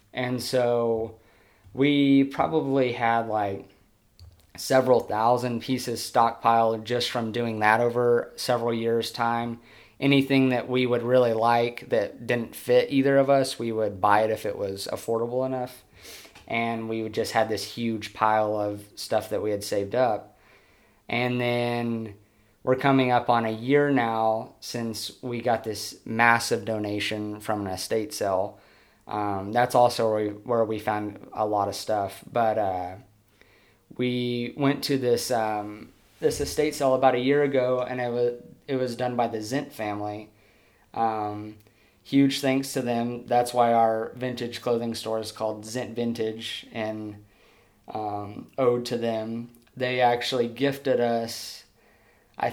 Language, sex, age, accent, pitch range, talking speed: English, male, 20-39, American, 110-125 Hz, 155 wpm